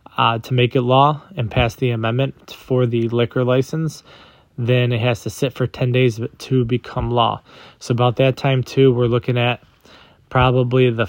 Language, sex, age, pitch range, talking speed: English, male, 20-39, 115-130 Hz, 185 wpm